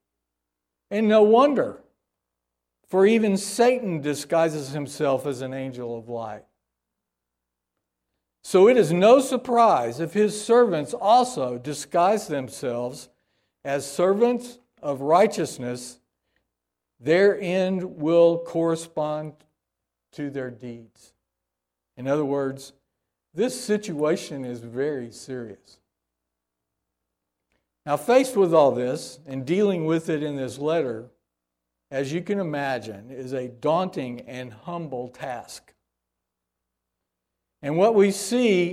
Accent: American